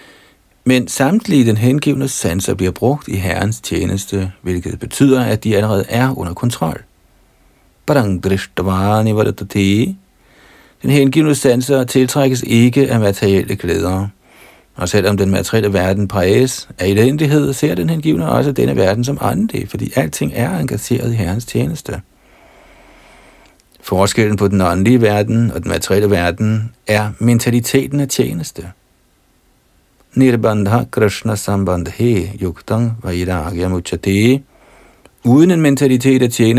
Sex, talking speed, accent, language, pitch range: male, 110 wpm, native, Danish, 95-125 Hz